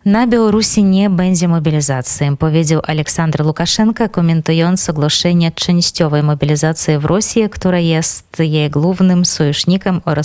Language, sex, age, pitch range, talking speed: Polish, female, 20-39, 150-185 Hz, 115 wpm